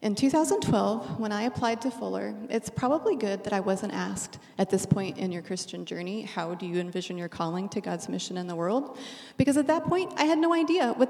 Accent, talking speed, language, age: American, 225 wpm, English, 30-49